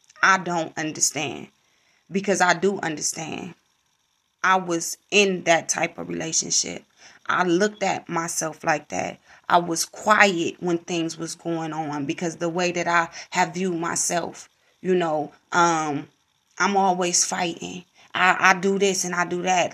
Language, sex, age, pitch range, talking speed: English, female, 20-39, 170-205 Hz, 150 wpm